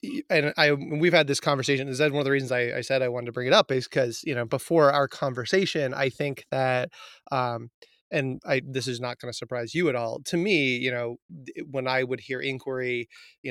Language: English